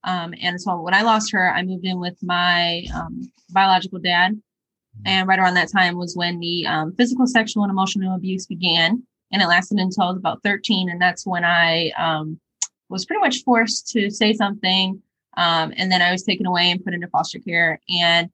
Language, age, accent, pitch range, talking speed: English, 10-29, American, 180-215 Hz, 200 wpm